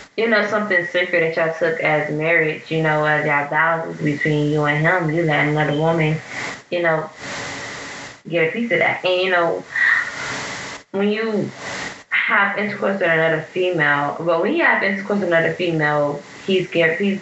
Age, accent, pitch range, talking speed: 10-29, American, 155-180 Hz, 170 wpm